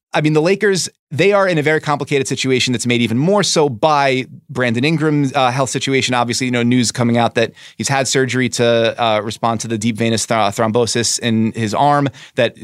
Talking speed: 210 wpm